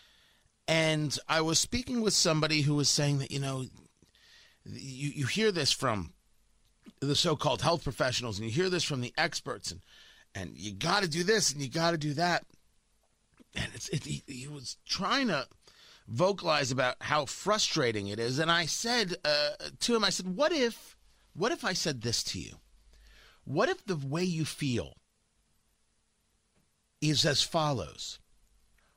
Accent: American